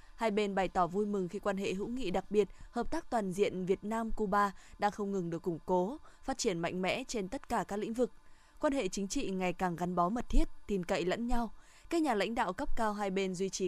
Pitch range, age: 185-225 Hz, 20-39